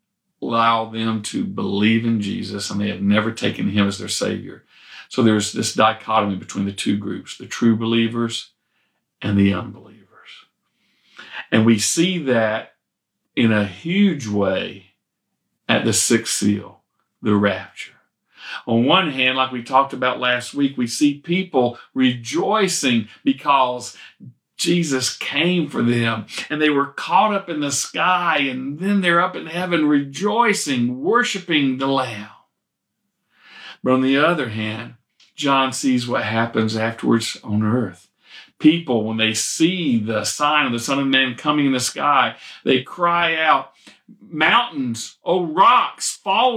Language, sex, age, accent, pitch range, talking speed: English, male, 50-69, American, 110-170 Hz, 145 wpm